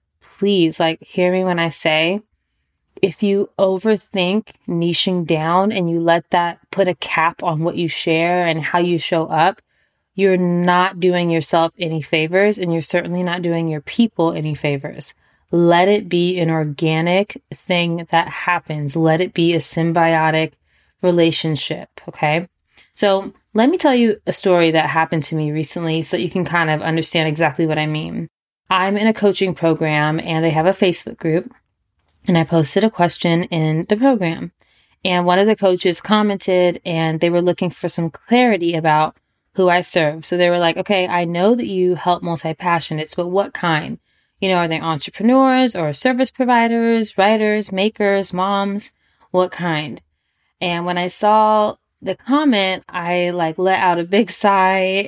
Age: 20-39